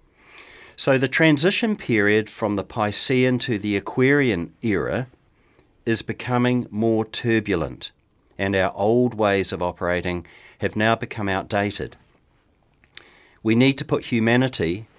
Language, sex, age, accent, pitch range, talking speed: English, male, 50-69, Australian, 95-120 Hz, 120 wpm